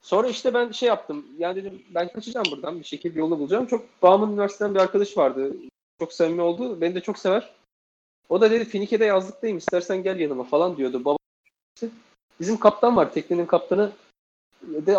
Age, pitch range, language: 30-49, 160-215 Hz, Turkish